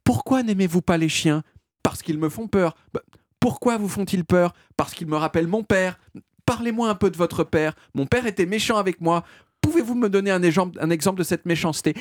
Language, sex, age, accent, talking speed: French, male, 40-59, French, 205 wpm